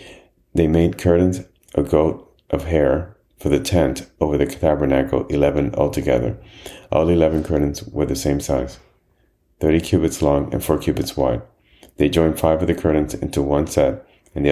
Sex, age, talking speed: male, 30-49, 170 wpm